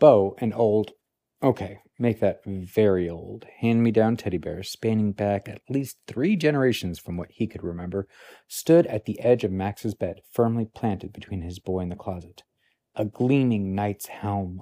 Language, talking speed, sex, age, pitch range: English, 170 wpm, male, 40-59, 100-130 Hz